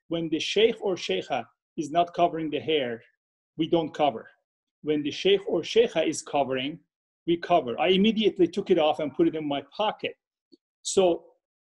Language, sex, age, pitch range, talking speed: English, male, 40-59, 155-235 Hz, 175 wpm